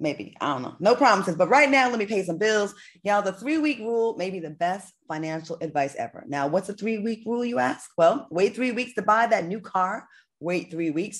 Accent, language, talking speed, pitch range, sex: American, English, 235 wpm, 165-230 Hz, female